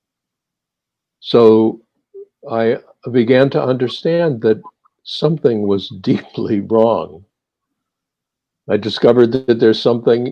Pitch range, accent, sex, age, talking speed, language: 95-120 Hz, American, male, 60-79, 85 wpm, English